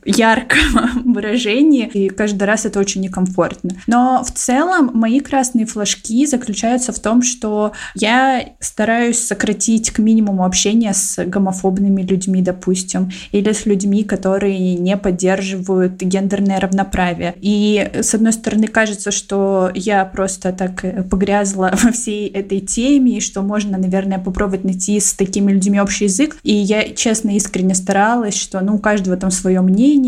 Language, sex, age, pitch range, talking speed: Russian, female, 20-39, 190-220 Hz, 145 wpm